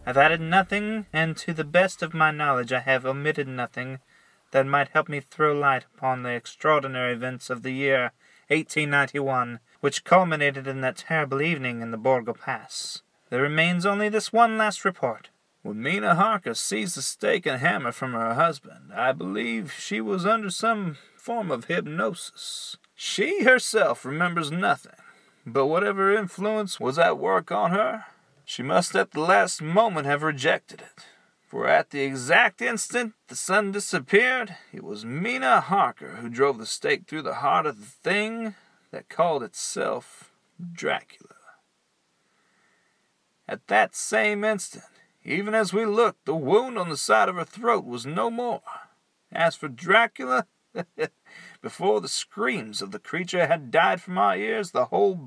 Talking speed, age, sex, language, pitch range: 160 wpm, 30-49, male, English, 135-210 Hz